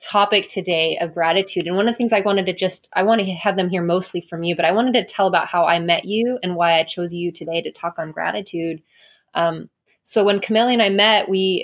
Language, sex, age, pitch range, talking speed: English, female, 20-39, 175-205 Hz, 260 wpm